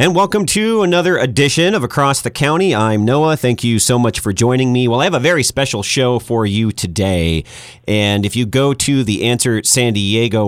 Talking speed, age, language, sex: 210 wpm, 40-59, English, male